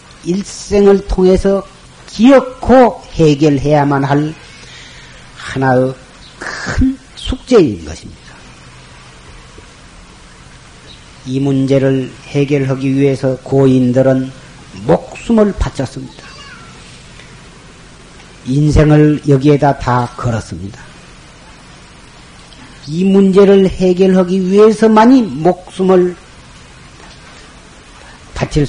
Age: 40-59